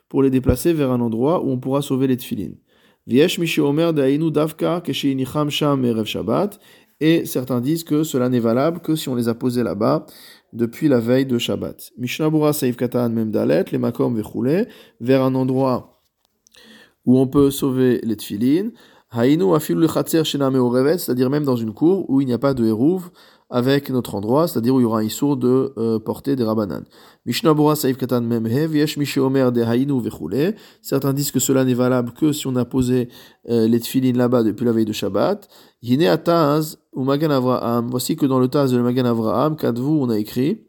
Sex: male